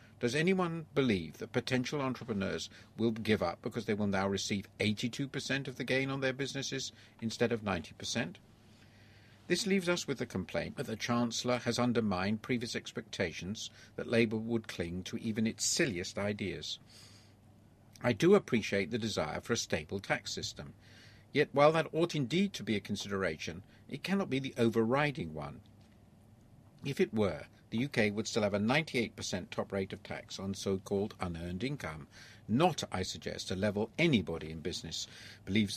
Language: English